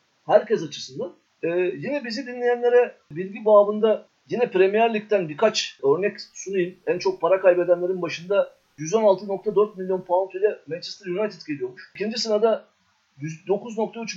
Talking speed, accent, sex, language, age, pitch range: 120 wpm, native, male, Turkish, 50-69, 180-225 Hz